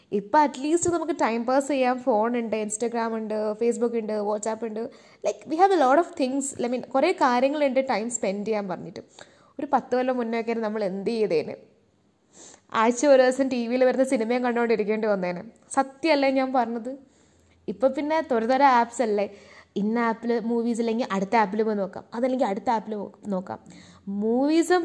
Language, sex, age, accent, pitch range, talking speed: Malayalam, female, 20-39, native, 220-270 Hz, 145 wpm